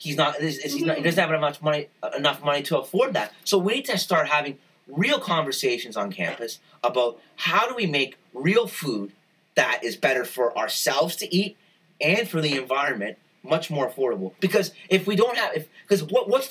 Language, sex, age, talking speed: English, male, 30-49, 205 wpm